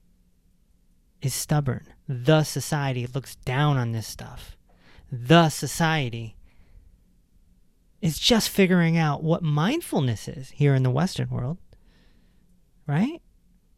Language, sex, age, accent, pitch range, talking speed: English, male, 30-49, American, 120-165 Hz, 105 wpm